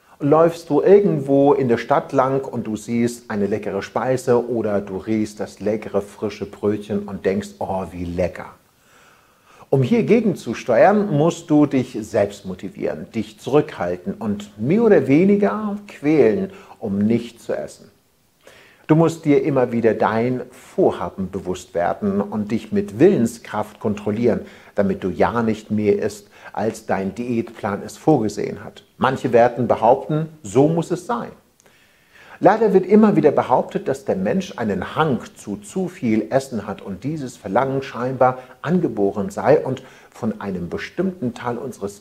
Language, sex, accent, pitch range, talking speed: German, male, German, 105-160 Hz, 150 wpm